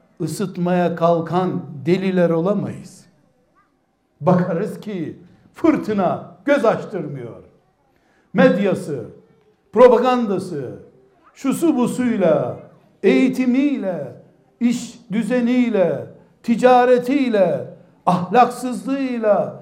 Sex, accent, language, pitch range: male, native, Turkish, 170-250 Hz